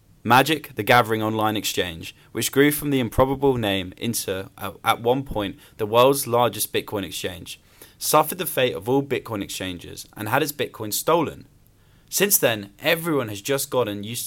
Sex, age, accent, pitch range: male, 10-29, British, 105-140 Hz